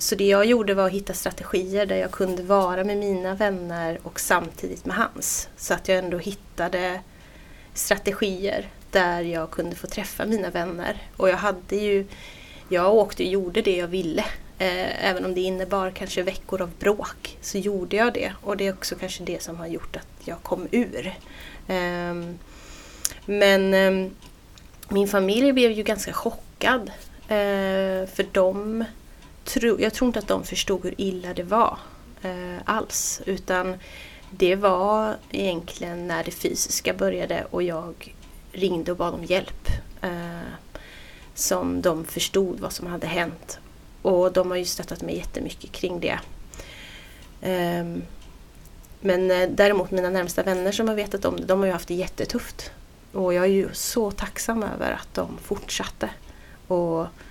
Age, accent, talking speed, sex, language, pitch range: 30-49, native, 155 wpm, female, Swedish, 180-200 Hz